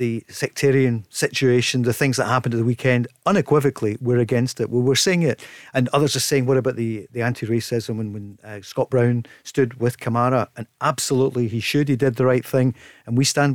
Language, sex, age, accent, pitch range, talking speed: English, male, 50-69, British, 120-150 Hz, 210 wpm